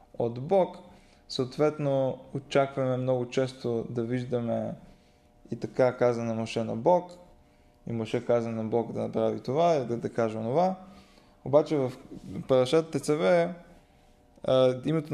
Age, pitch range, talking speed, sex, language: 20-39, 120-150 Hz, 125 wpm, male, Bulgarian